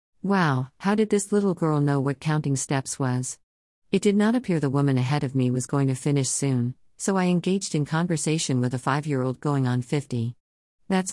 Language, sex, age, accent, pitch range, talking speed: English, female, 50-69, American, 130-175 Hz, 200 wpm